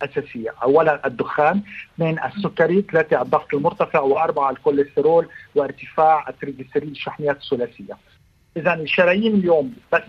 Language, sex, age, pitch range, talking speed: Arabic, male, 50-69, 145-195 Hz, 105 wpm